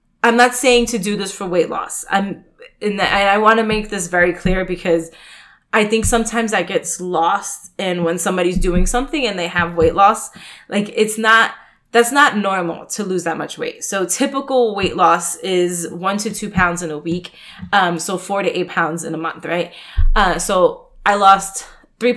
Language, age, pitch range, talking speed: English, 20-39, 175-220 Hz, 200 wpm